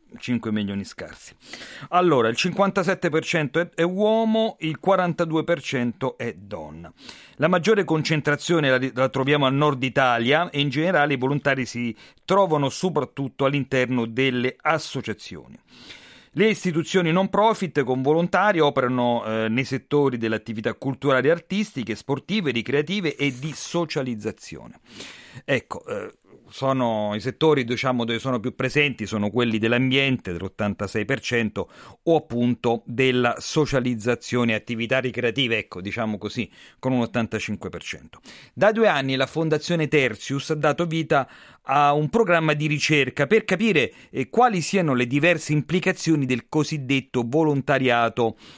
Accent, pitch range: native, 120-160 Hz